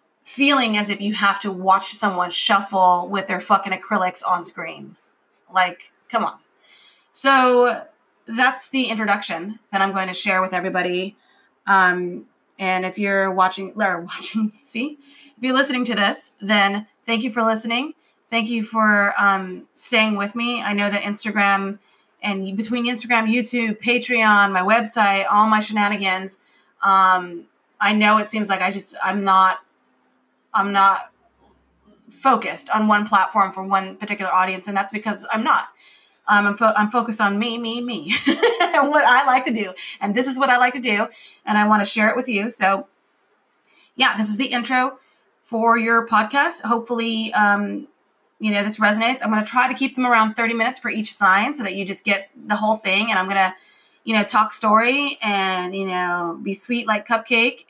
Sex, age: female, 30-49